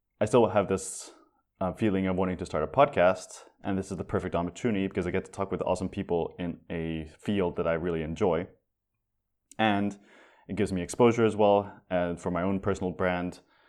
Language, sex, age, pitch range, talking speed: English, male, 20-39, 85-100 Hz, 205 wpm